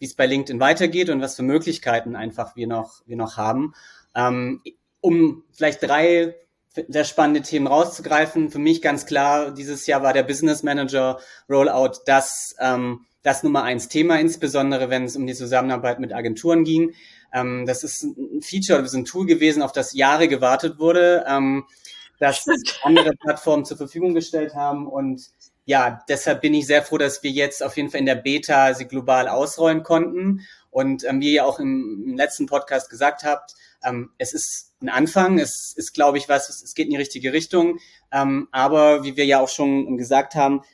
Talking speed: 185 wpm